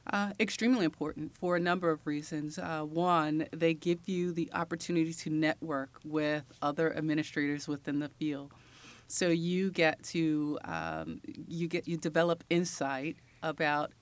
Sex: female